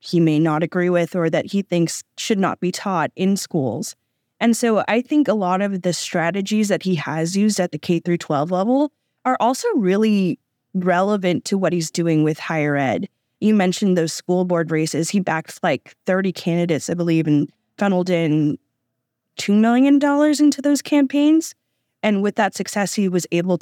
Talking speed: 185 wpm